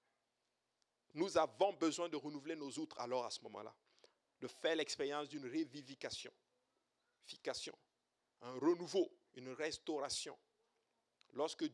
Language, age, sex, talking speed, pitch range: French, 50-69, male, 105 wpm, 130-175 Hz